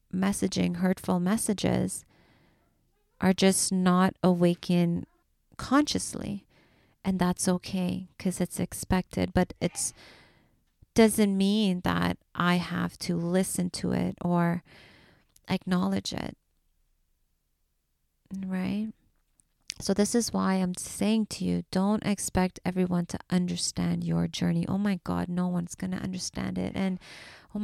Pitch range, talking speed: 170-195 Hz, 115 wpm